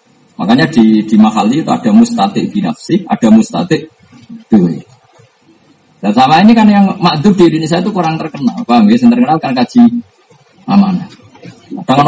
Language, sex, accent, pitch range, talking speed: Indonesian, male, native, 170-240 Hz, 145 wpm